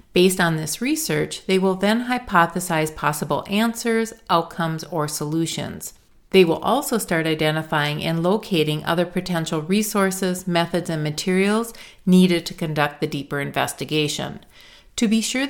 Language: English